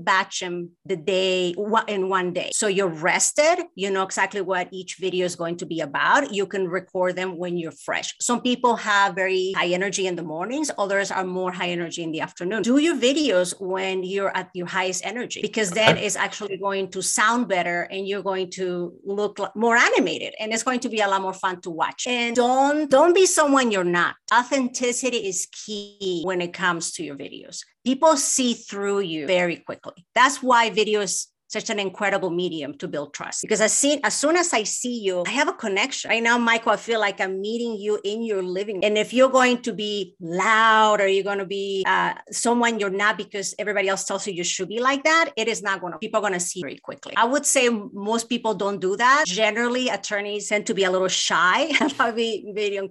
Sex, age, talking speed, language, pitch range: female, 30-49, 220 wpm, English, 190-240 Hz